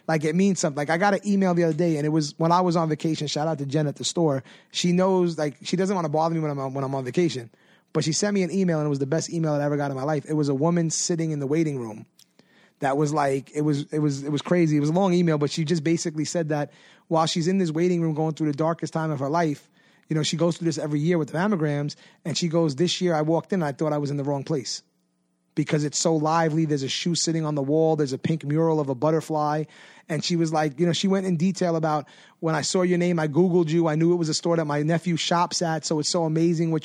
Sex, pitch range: male, 150-175 Hz